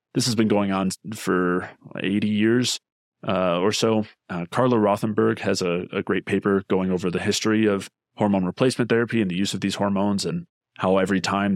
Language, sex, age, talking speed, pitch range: English, male, 20-39, 190 wpm, 95-115 Hz